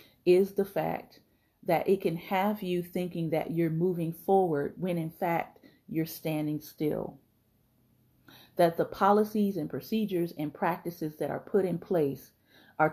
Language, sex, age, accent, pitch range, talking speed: English, female, 40-59, American, 160-200 Hz, 150 wpm